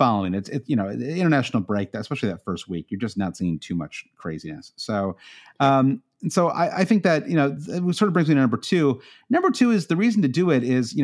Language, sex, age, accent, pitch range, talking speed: English, male, 30-49, American, 110-145 Hz, 250 wpm